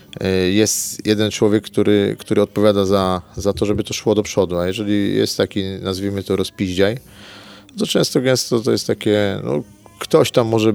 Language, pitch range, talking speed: Polish, 100-115 Hz, 175 wpm